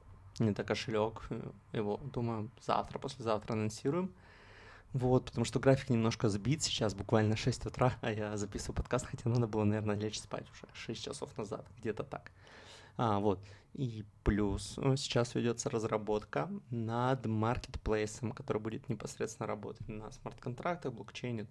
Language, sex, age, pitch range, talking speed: Russian, male, 20-39, 105-125 Hz, 140 wpm